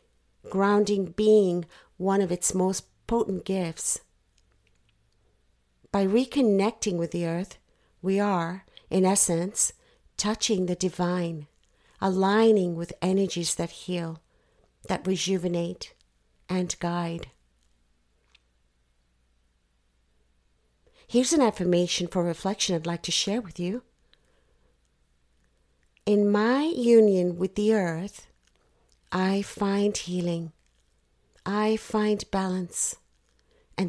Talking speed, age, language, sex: 95 wpm, 50-69, English, female